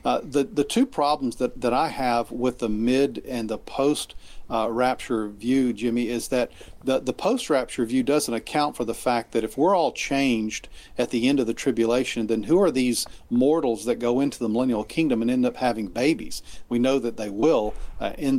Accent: American